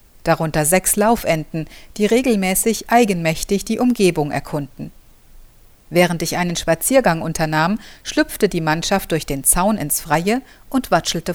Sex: female